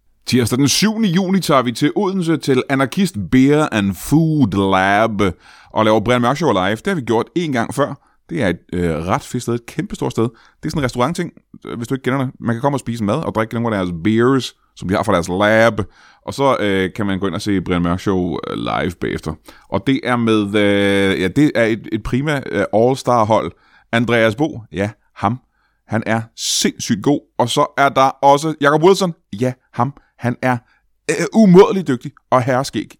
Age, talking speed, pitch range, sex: 30-49, 215 wpm, 100-140 Hz, male